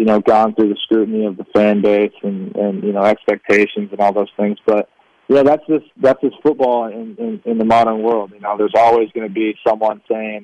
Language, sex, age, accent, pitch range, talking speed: English, male, 20-39, American, 105-120 Hz, 235 wpm